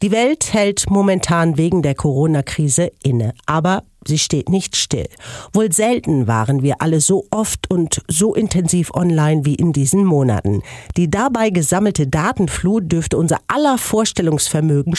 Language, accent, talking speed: German, German, 145 wpm